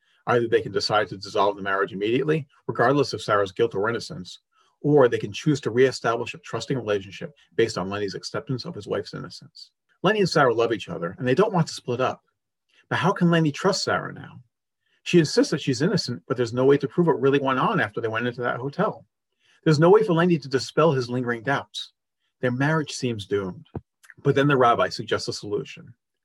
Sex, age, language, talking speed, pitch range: male, 40-59, English, 215 wpm, 115-150 Hz